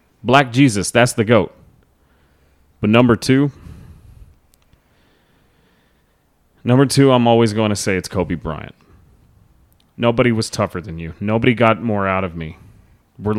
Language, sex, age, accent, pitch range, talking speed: English, male, 30-49, American, 95-120 Hz, 135 wpm